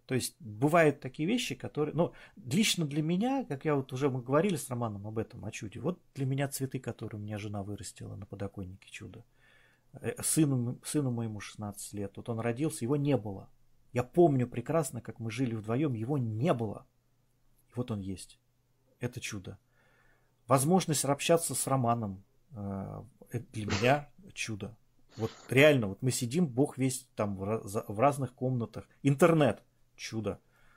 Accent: native